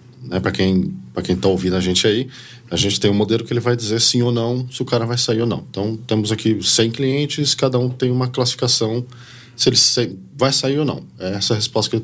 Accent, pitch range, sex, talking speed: Brazilian, 110-145 Hz, male, 255 wpm